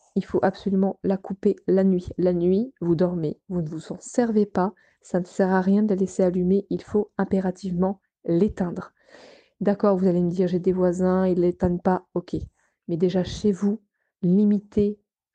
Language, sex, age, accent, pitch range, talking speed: French, female, 20-39, French, 175-200 Hz, 190 wpm